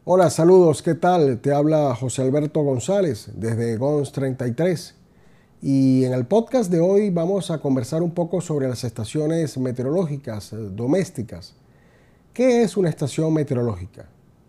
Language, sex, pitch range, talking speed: Spanish, male, 130-175 Hz, 135 wpm